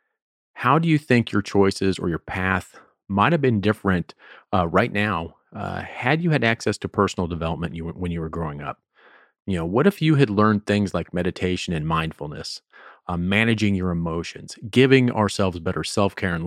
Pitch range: 90-115 Hz